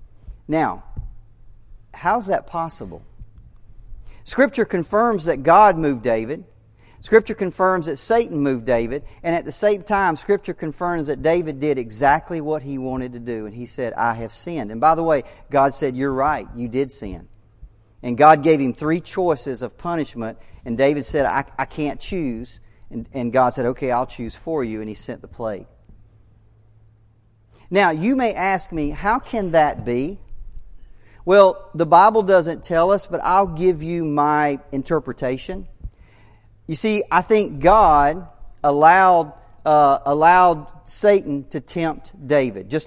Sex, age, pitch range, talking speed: male, 40-59, 115-165 Hz, 160 wpm